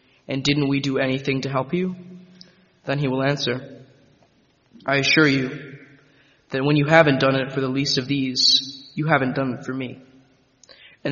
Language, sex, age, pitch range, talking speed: English, male, 20-39, 135-155 Hz, 180 wpm